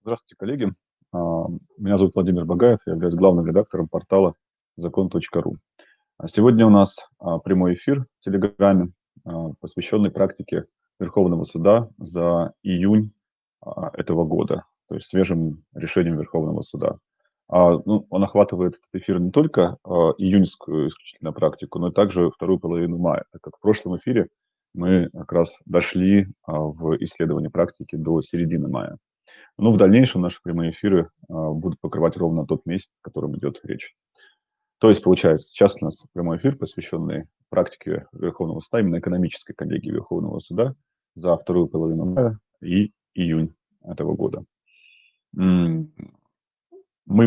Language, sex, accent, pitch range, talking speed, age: Russian, male, native, 85-100 Hz, 130 wpm, 30-49